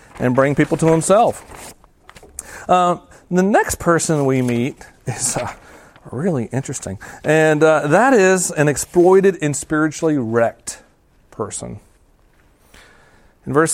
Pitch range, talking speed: 120-160 Hz, 120 wpm